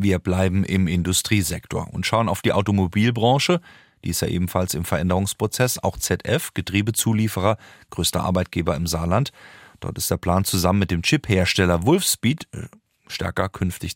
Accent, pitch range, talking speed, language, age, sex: German, 90-110 Hz, 140 wpm, German, 40-59, male